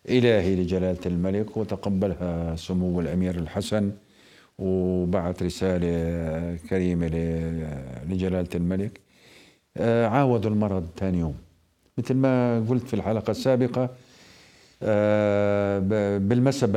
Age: 50-69